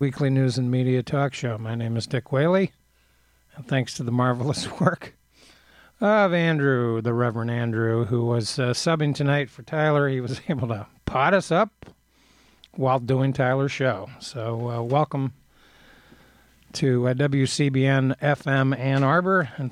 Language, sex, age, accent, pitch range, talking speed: English, male, 50-69, American, 120-140 Hz, 150 wpm